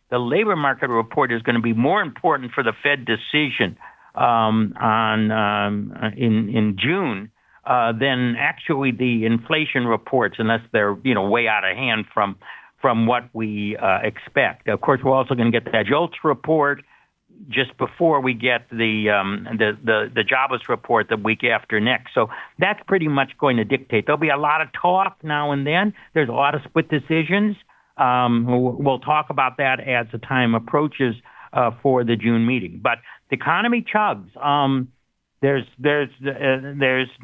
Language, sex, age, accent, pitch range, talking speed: English, male, 60-79, American, 120-155 Hz, 180 wpm